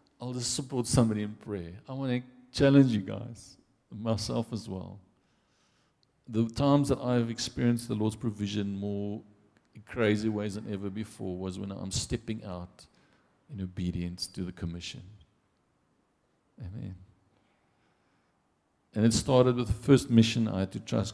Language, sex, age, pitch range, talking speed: English, male, 50-69, 95-120 Hz, 150 wpm